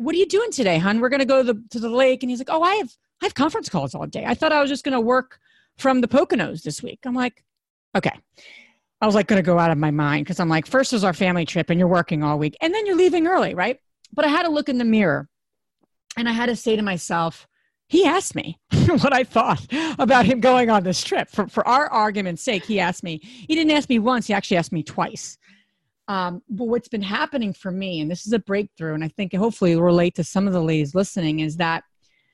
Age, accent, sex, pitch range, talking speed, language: 40-59, American, female, 175-250 Hz, 265 wpm, English